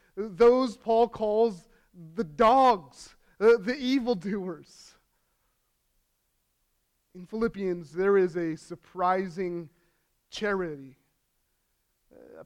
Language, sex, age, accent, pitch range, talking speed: English, male, 30-49, American, 155-195 Hz, 75 wpm